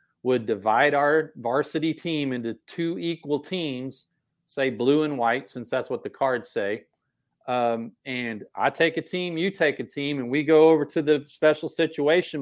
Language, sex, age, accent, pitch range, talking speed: English, male, 40-59, American, 135-165 Hz, 180 wpm